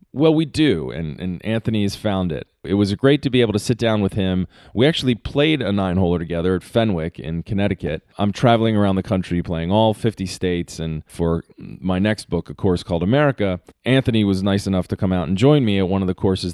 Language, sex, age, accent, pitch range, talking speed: English, male, 30-49, American, 85-105 Hz, 230 wpm